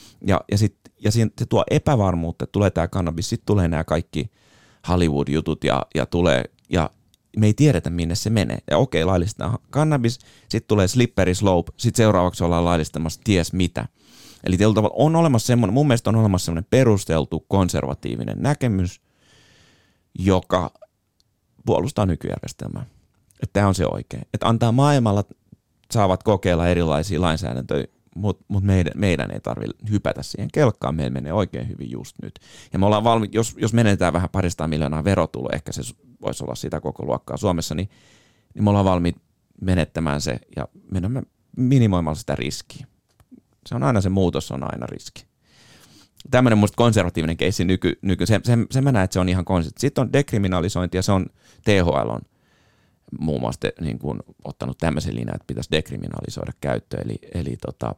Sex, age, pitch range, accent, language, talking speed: male, 30-49, 85-110 Hz, native, Finnish, 165 wpm